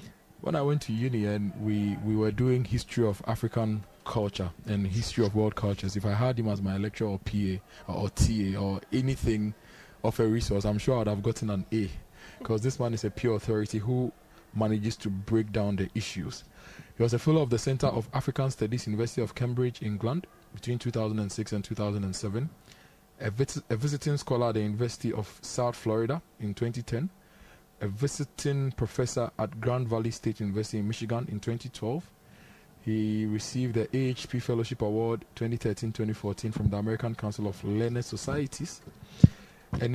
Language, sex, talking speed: English, male, 170 wpm